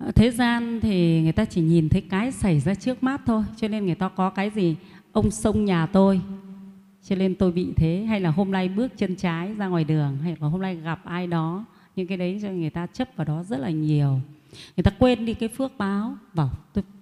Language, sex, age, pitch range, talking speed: Vietnamese, female, 20-39, 170-220 Hz, 240 wpm